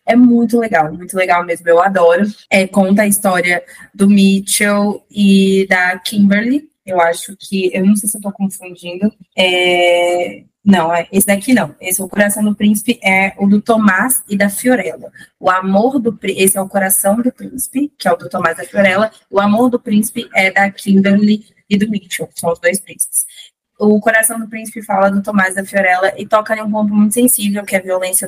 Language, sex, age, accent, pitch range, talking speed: Portuguese, female, 20-39, Brazilian, 185-215 Hz, 205 wpm